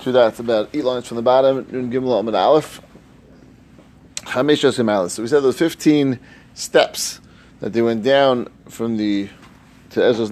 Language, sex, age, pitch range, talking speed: English, male, 30-49, 115-155 Hz, 165 wpm